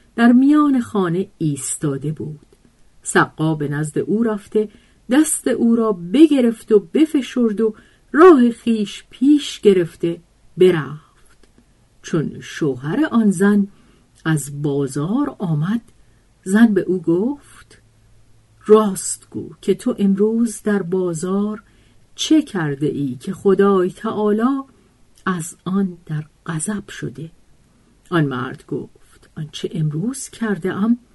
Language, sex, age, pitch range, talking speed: Persian, female, 50-69, 160-235 Hz, 110 wpm